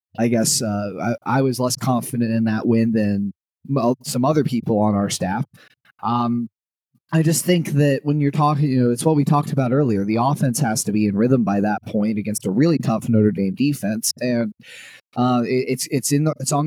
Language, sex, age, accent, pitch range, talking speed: English, male, 20-39, American, 110-140 Hz, 220 wpm